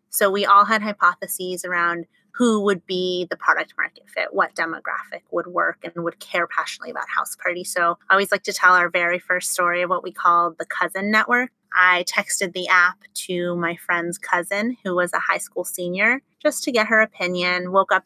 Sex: female